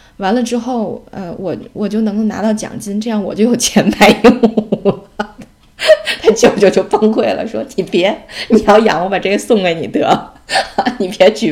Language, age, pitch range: Chinese, 20-39, 170-225 Hz